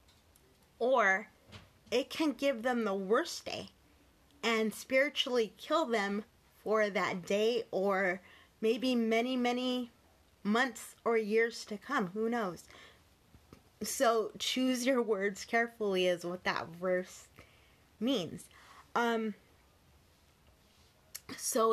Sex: female